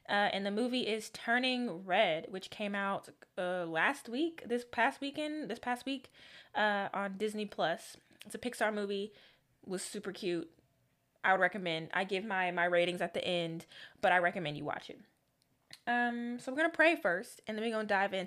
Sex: female